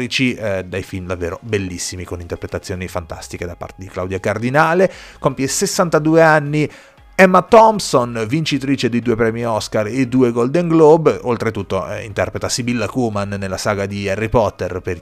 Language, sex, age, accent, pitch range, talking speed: Italian, male, 30-49, native, 100-130 Hz, 150 wpm